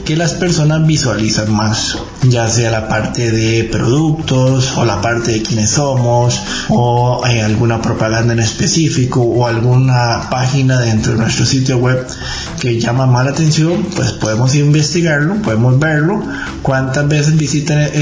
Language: Spanish